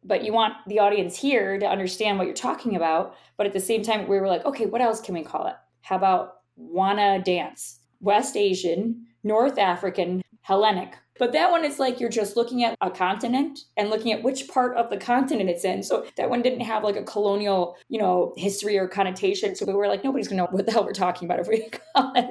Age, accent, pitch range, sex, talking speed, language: 20-39, American, 190-230 Hz, female, 235 wpm, English